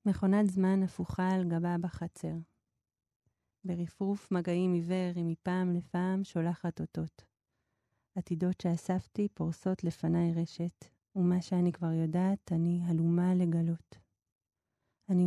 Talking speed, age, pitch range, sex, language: 105 wpm, 30-49, 165-185 Hz, female, Hebrew